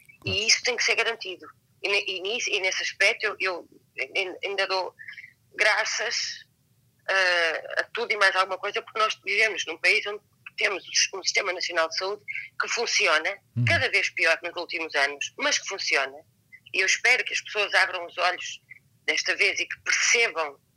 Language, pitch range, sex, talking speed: Portuguese, 165-225 Hz, female, 175 wpm